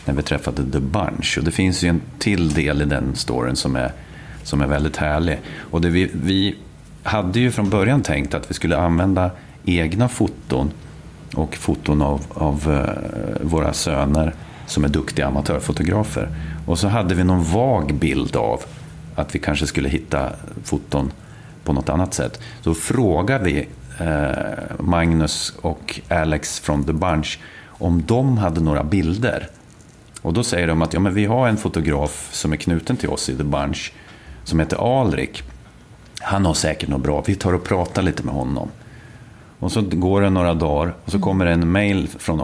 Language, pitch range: English, 75-95 Hz